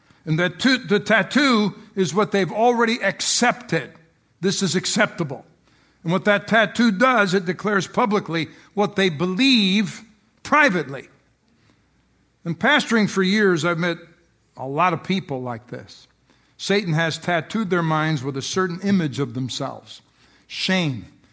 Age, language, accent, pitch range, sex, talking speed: 60-79, English, American, 160-215 Hz, male, 130 wpm